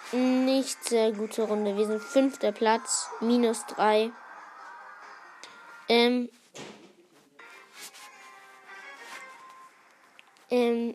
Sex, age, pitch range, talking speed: female, 20-39, 225-255 Hz, 65 wpm